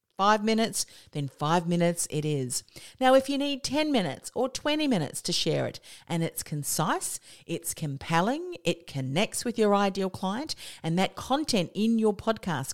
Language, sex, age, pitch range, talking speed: English, female, 40-59, 160-220 Hz, 170 wpm